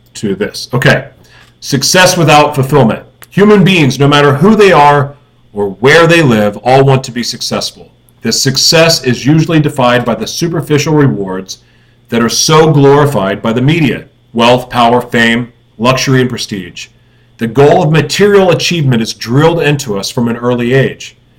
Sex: male